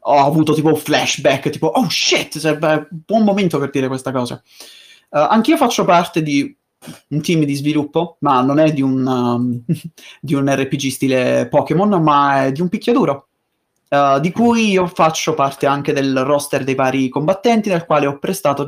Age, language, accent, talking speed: 30-49, Italian, native, 185 wpm